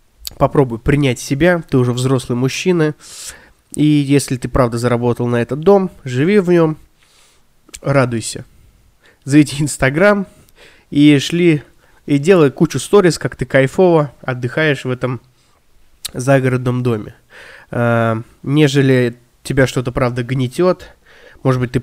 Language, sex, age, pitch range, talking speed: Russian, male, 20-39, 125-155 Hz, 120 wpm